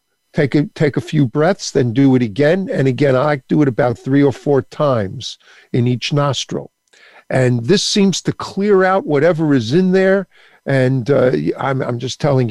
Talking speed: 185 wpm